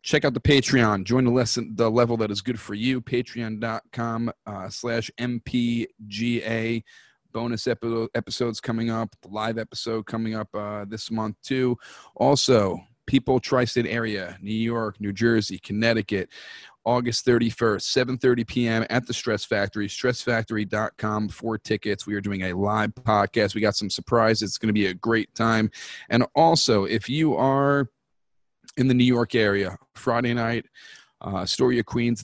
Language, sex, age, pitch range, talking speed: English, male, 40-59, 105-120 Hz, 155 wpm